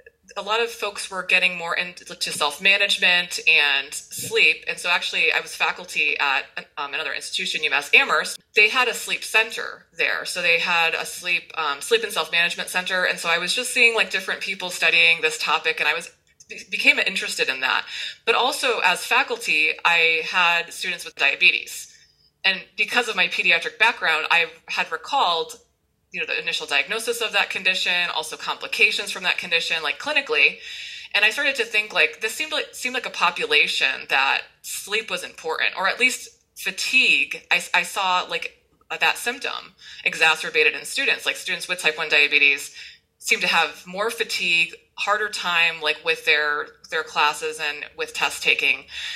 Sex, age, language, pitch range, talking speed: female, 20-39, English, 170-250 Hz, 175 wpm